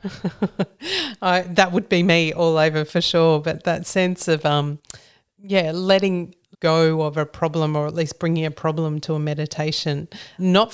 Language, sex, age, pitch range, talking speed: English, female, 40-59, 155-185 Hz, 170 wpm